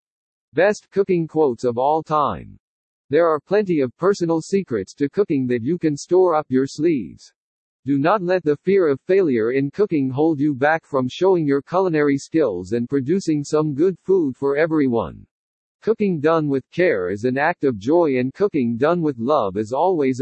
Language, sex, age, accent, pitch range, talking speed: English, male, 50-69, American, 135-185 Hz, 180 wpm